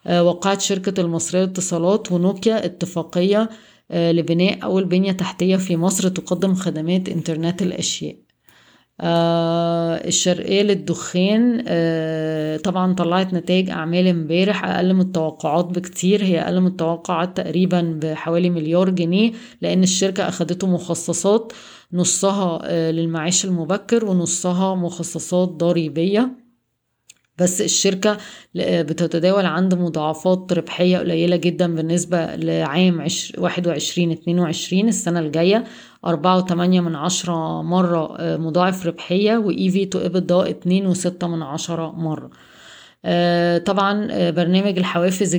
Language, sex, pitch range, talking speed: Arabic, female, 170-190 Hz, 105 wpm